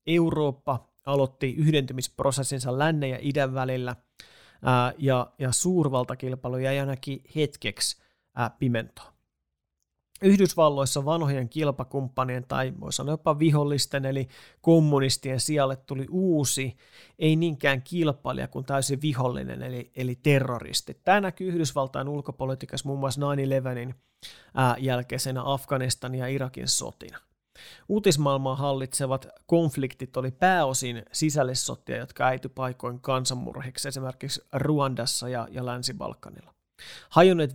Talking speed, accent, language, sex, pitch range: 100 wpm, native, Finnish, male, 125-145 Hz